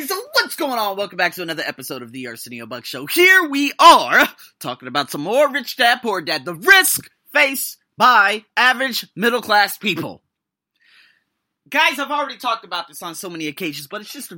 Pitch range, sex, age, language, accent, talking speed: 150-235 Hz, male, 30-49, English, American, 190 wpm